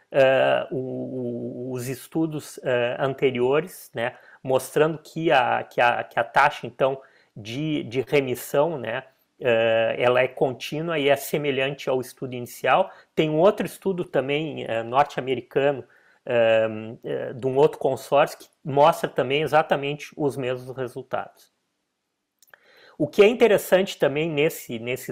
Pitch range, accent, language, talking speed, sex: 130-165 Hz, Brazilian, Portuguese, 105 wpm, male